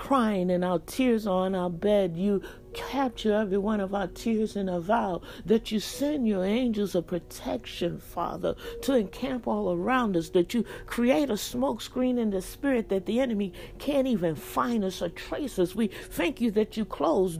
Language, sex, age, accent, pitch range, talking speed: English, female, 60-79, American, 195-260 Hz, 195 wpm